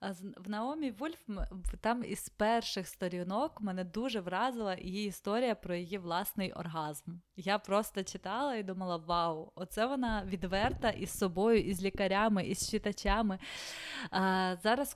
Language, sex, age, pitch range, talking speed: Ukrainian, female, 20-39, 185-230 Hz, 130 wpm